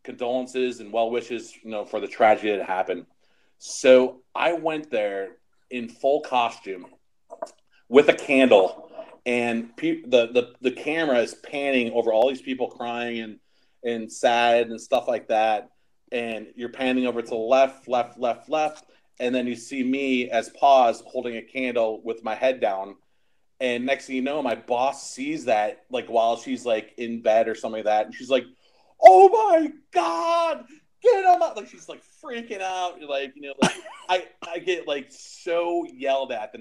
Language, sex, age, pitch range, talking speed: English, male, 30-49, 110-140 Hz, 180 wpm